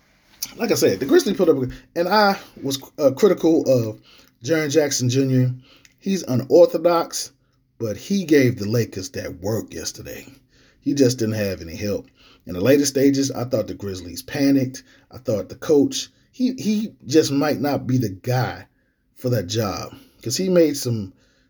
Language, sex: English, male